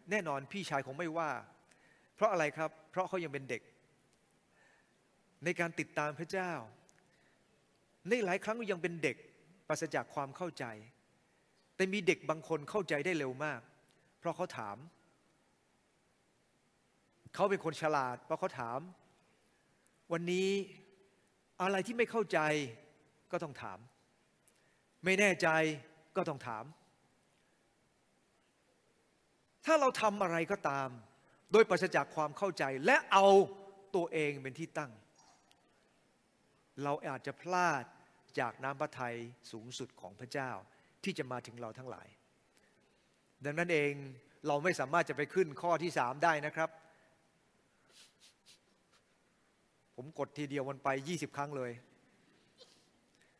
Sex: male